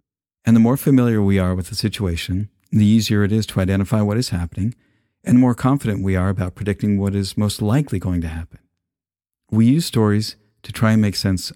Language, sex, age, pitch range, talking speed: English, male, 50-69, 95-115 Hz, 215 wpm